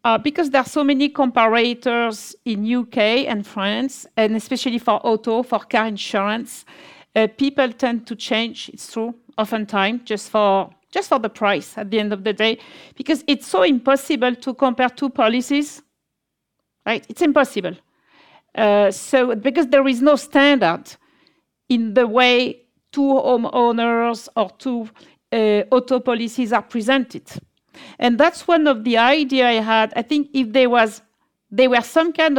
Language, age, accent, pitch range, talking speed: English, 50-69, French, 225-275 Hz, 160 wpm